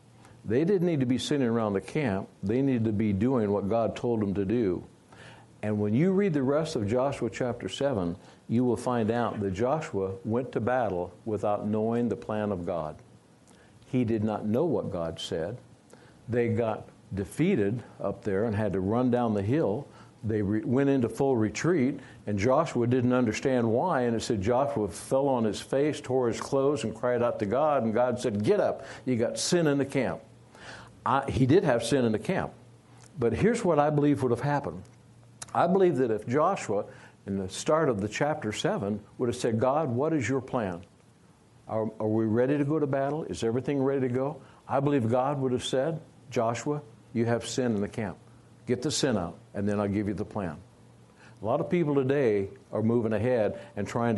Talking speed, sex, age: 205 wpm, male, 60-79